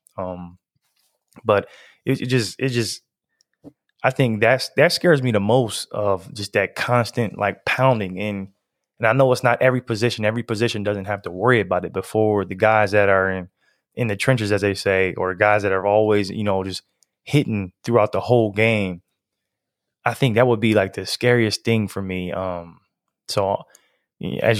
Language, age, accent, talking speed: English, 20-39, American, 185 wpm